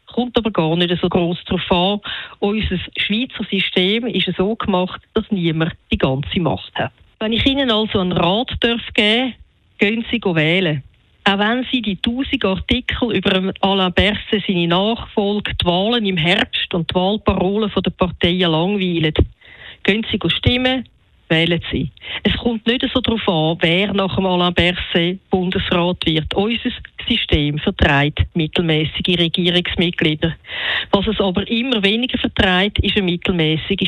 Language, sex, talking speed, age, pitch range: German, female, 155 wpm, 50-69, 175-220 Hz